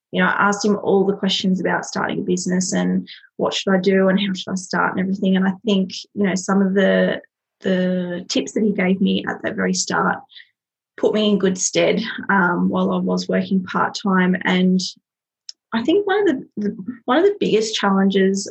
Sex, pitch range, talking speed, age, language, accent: female, 185-210 Hz, 210 wpm, 20-39, English, Australian